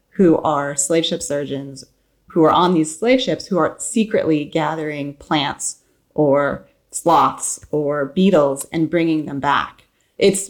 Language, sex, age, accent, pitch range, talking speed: English, female, 30-49, American, 140-175 Hz, 145 wpm